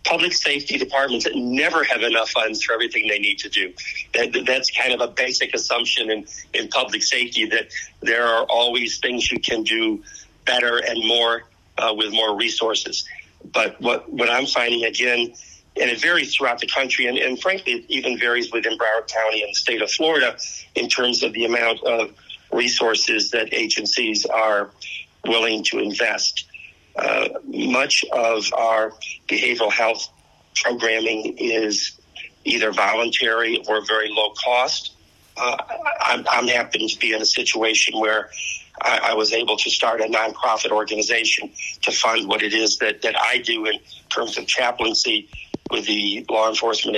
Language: English